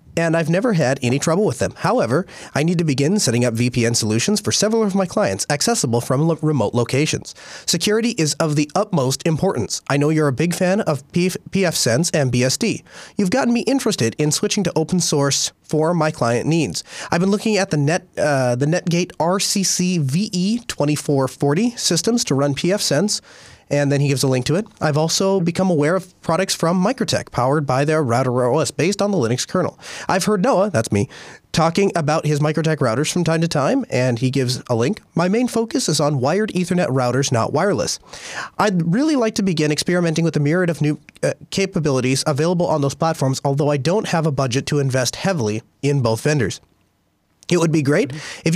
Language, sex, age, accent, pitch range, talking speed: English, male, 30-49, American, 140-185 Hz, 200 wpm